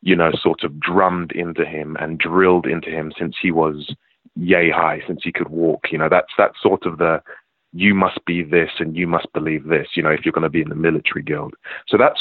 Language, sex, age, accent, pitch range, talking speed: English, male, 30-49, British, 80-90 Hz, 240 wpm